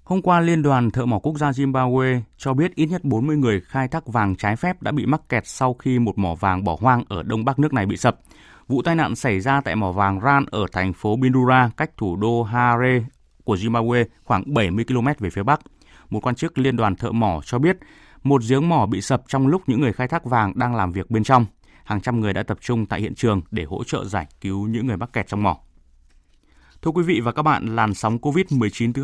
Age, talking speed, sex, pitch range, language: 20-39, 245 wpm, male, 105-140 Hz, Vietnamese